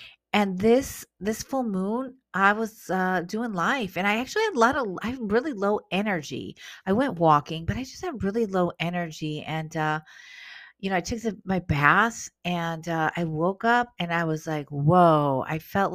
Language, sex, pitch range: English, female, 155-200 Hz